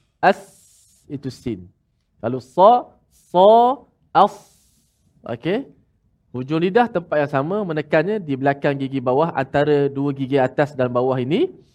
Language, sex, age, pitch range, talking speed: Malayalam, male, 20-39, 125-175 Hz, 140 wpm